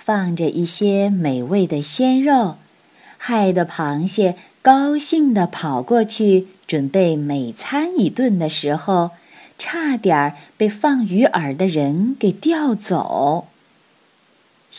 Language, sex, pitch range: Chinese, female, 155-255 Hz